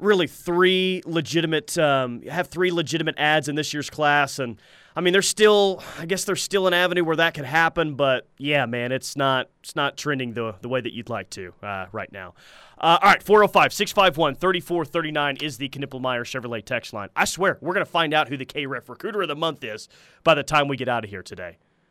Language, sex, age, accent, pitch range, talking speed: English, male, 30-49, American, 145-190 Hz, 220 wpm